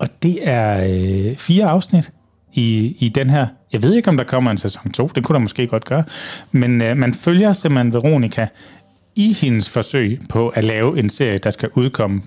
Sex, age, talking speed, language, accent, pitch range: male, 30-49, 205 wpm, Danish, native, 110-145 Hz